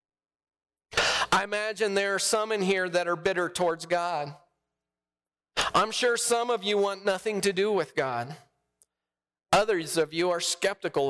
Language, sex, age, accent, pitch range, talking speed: English, male, 40-59, American, 130-190 Hz, 150 wpm